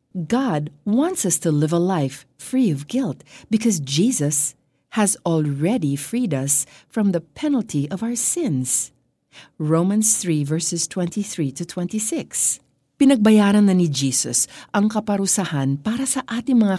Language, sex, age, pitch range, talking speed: Filipino, female, 50-69, 145-210 Hz, 130 wpm